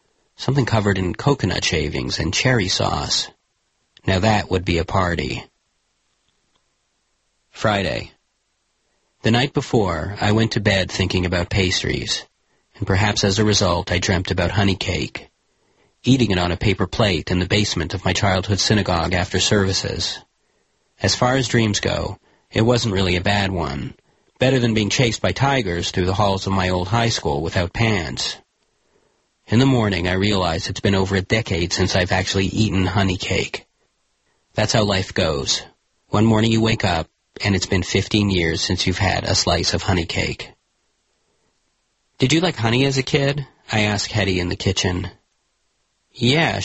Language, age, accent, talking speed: English, 40-59, American, 165 wpm